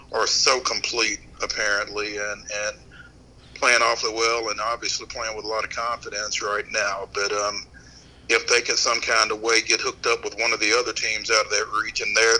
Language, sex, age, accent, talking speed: English, male, 40-59, American, 205 wpm